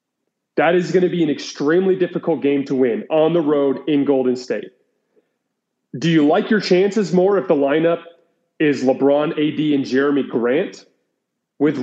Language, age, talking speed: English, 30-49, 165 wpm